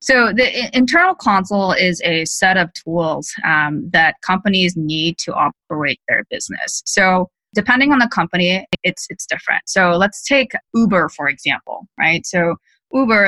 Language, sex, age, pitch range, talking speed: English, female, 20-39, 160-200 Hz, 155 wpm